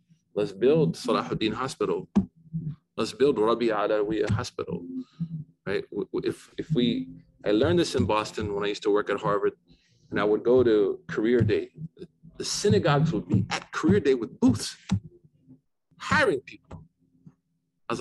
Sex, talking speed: male, 150 wpm